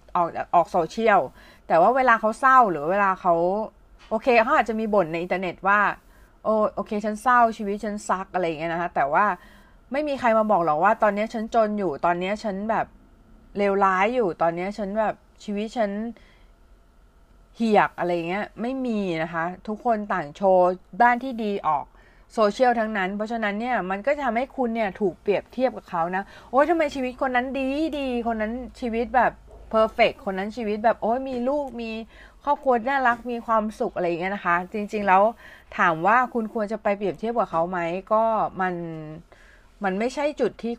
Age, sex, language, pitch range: 30-49, female, Thai, 180-230 Hz